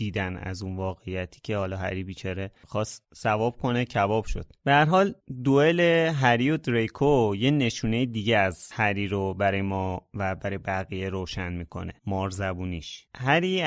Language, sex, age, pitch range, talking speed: Persian, male, 30-49, 100-140 Hz, 155 wpm